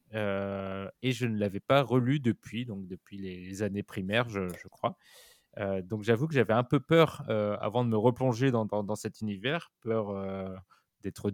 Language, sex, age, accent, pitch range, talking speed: French, male, 20-39, French, 100-125 Hz, 195 wpm